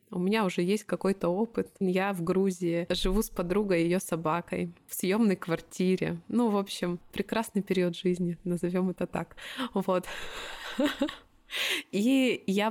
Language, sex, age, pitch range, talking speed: Russian, female, 20-39, 180-225 Hz, 135 wpm